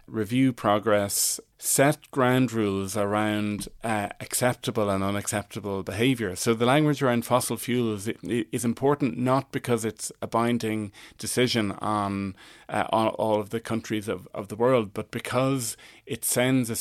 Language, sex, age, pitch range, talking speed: English, male, 30-49, 105-120 Hz, 145 wpm